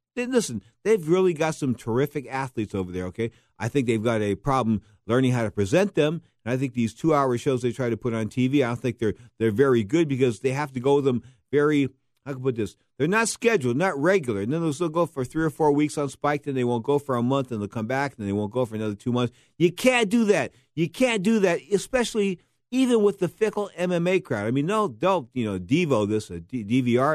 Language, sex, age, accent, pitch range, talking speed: English, male, 50-69, American, 115-145 Hz, 250 wpm